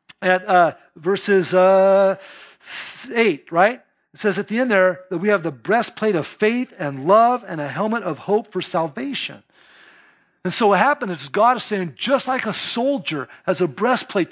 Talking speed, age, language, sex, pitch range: 180 wpm, 40-59, English, male, 175-235 Hz